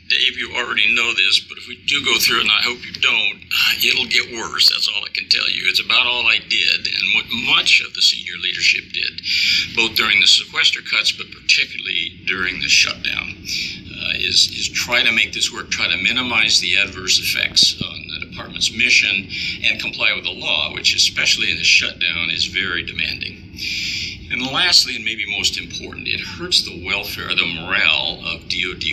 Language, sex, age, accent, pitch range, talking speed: English, male, 50-69, American, 85-100 Hz, 195 wpm